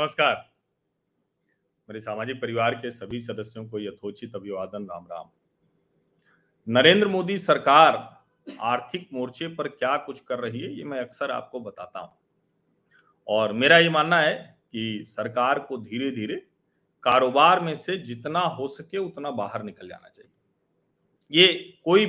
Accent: native